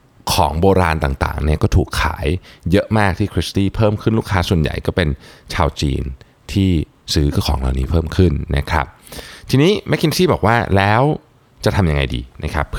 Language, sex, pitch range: Thai, male, 75-105 Hz